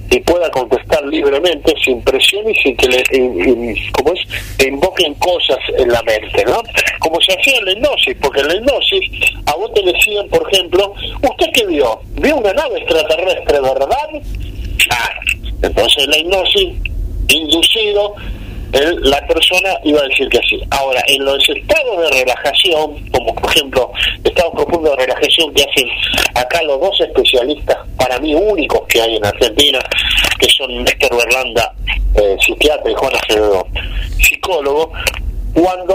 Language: Spanish